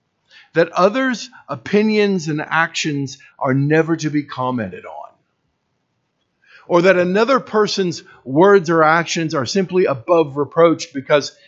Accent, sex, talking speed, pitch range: American, male, 120 wpm, 130-175 Hz